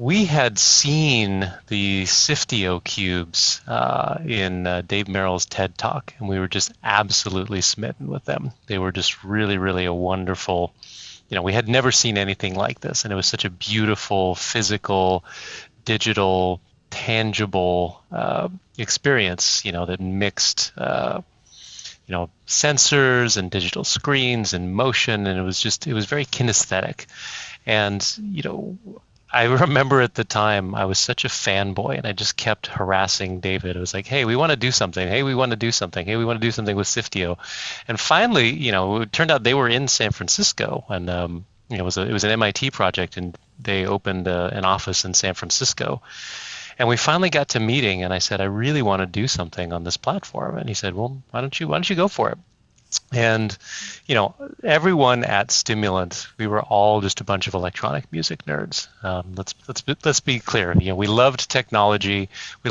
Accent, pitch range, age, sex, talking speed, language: American, 95-120 Hz, 30-49, male, 195 wpm, English